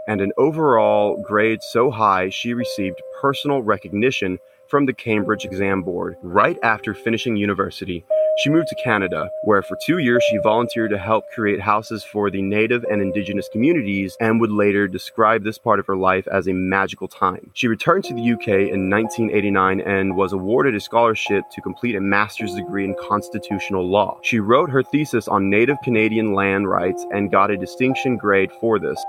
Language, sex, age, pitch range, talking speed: English, male, 20-39, 100-125 Hz, 180 wpm